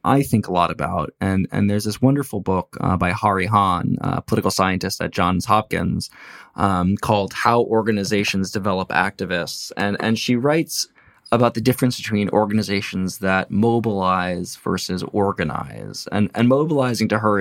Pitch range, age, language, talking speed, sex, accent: 95-110 Hz, 20-39, English, 160 wpm, male, American